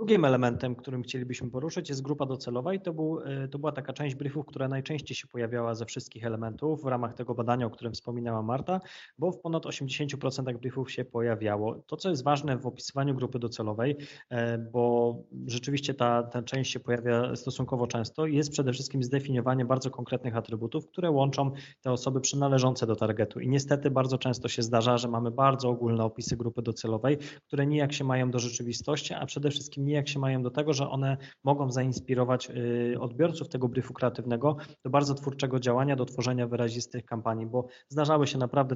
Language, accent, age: Polish, native, 20-39